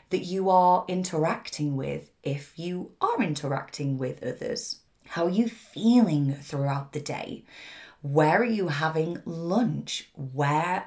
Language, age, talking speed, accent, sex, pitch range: English, 20-39, 130 wpm, British, female, 150-190 Hz